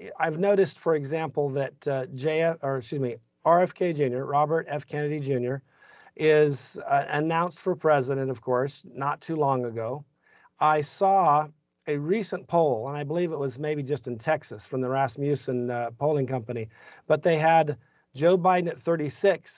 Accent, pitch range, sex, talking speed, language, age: American, 135-170 Hz, male, 165 wpm, English, 50-69